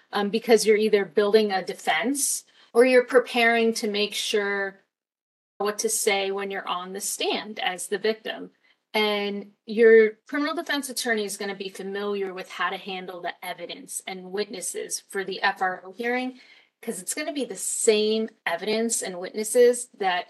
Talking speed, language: 170 wpm, English